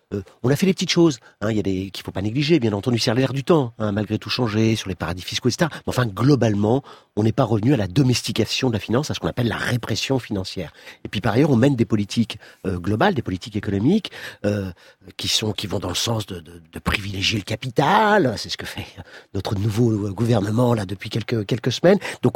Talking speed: 245 wpm